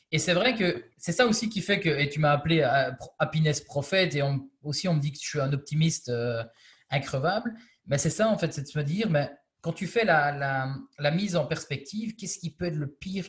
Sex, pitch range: male, 140-180 Hz